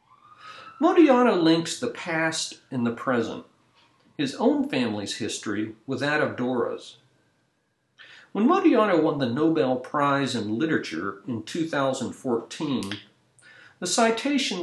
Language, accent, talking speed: English, American, 110 wpm